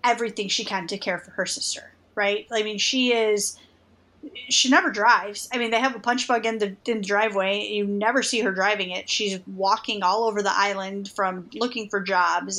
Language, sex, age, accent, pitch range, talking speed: English, female, 30-49, American, 200-250 Hz, 205 wpm